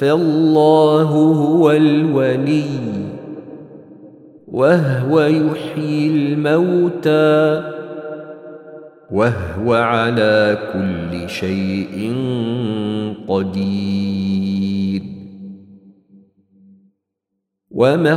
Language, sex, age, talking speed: Arabic, male, 40-59, 40 wpm